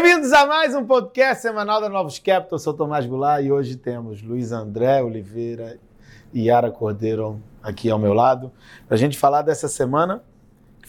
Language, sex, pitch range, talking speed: Portuguese, male, 115-145 Hz, 180 wpm